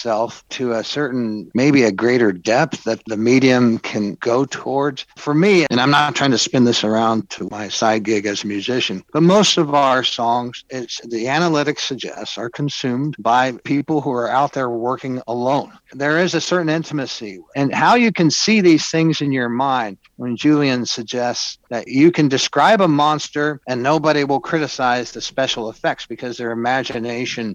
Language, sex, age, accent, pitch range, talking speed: English, male, 60-79, American, 120-165 Hz, 180 wpm